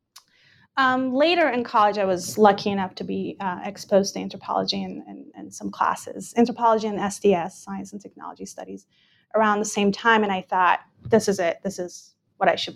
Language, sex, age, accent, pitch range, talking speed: English, female, 30-49, American, 195-245 Hz, 185 wpm